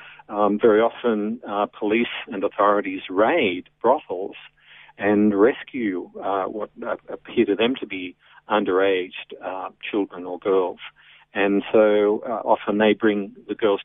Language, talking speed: English, 135 wpm